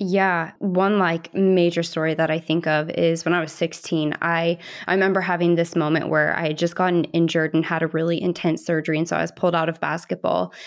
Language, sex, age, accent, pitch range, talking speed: English, female, 20-39, American, 160-180 Hz, 225 wpm